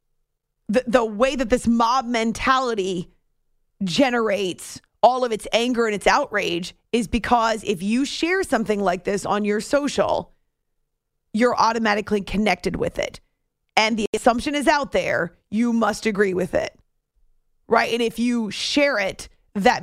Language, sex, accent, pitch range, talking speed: English, female, American, 205-245 Hz, 150 wpm